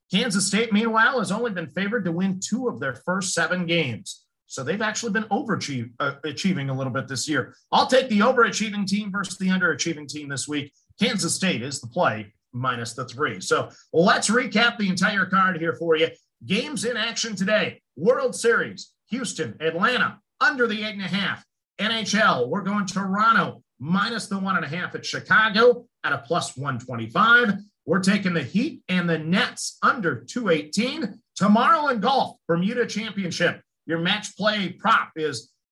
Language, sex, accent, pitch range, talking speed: English, male, American, 165-225 Hz, 175 wpm